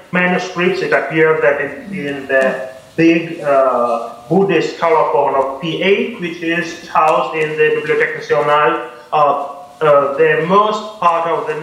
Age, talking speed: 30-49, 140 wpm